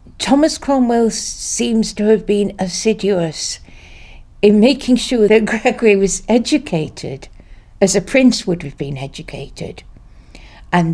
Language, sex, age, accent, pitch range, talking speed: English, female, 60-79, British, 165-215 Hz, 120 wpm